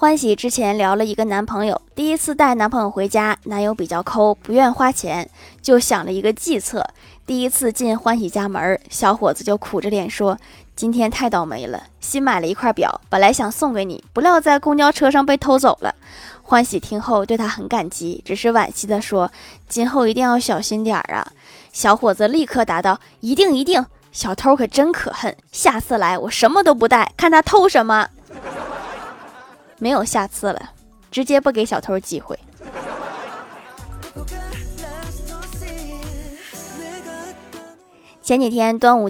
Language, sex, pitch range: Chinese, female, 205-270 Hz